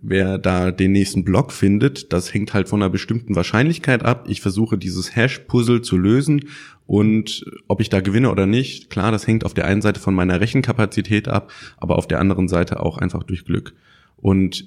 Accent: German